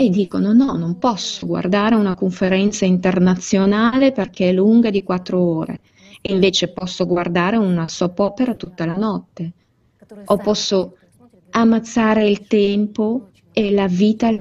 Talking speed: 140 wpm